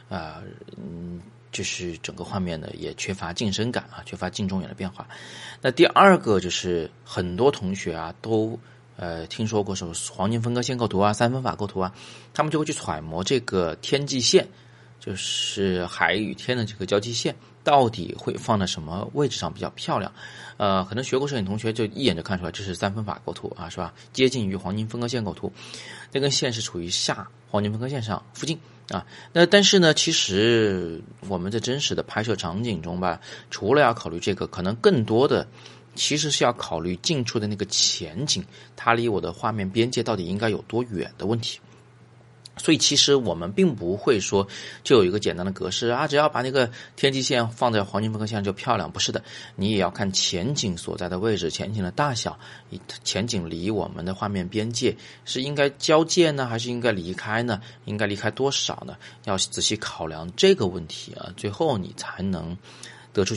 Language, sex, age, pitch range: Chinese, male, 30-49, 90-125 Hz